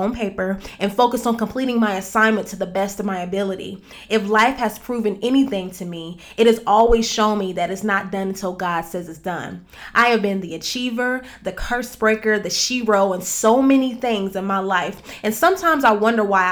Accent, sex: American, female